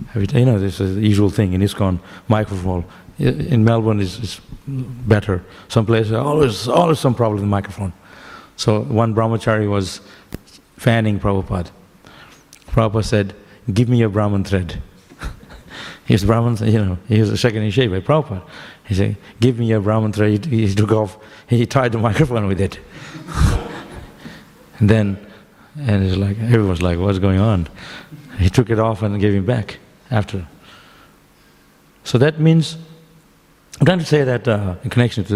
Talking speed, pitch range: 165 wpm, 100-120 Hz